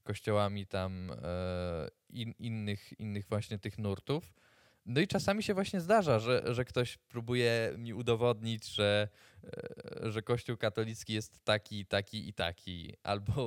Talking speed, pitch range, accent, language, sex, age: 135 wpm, 95-115 Hz, native, Polish, male, 20-39